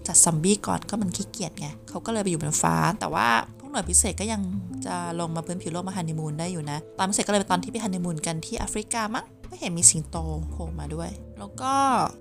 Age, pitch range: 20-39, 160-220 Hz